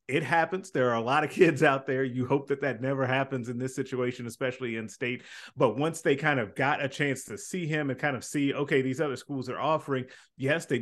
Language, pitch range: English, 125-150 Hz